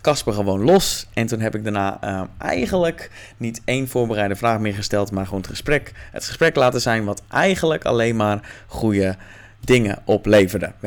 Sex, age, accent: male, 20-39, Dutch